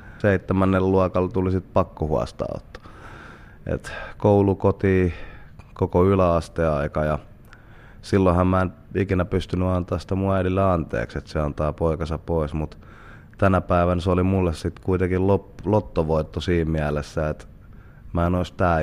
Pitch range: 80-95 Hz